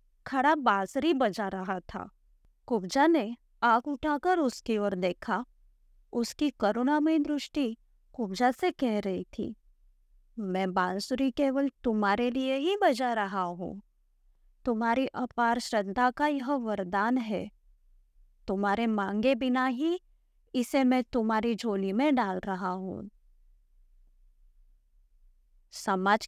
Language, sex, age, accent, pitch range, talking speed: Hindi, female, 20-39, native, 195-270 Hz, 110 wpm